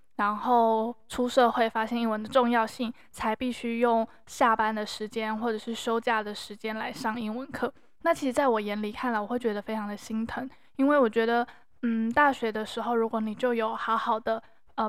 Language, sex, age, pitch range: Chinese, female, 20-39, 220-250 Hz